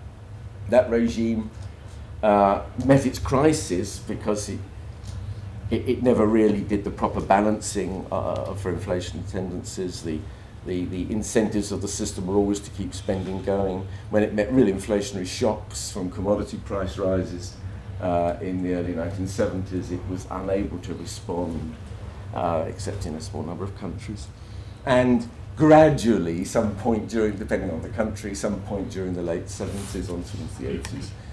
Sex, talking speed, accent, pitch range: male, 155 wpm, British, 95-115 Hz